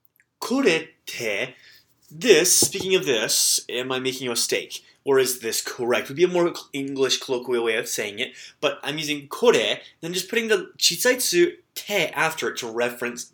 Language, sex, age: English, male, 20-39